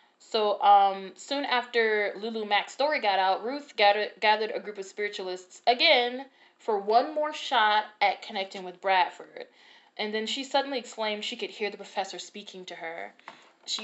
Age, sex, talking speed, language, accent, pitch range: 20-39, female, 165 wpm, English, American, 195-235 Hz